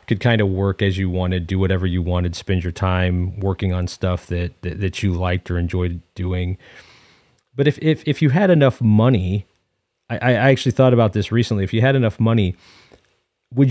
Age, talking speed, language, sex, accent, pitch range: 30-49, 200 wpm, English, male, American, 90-115 Hz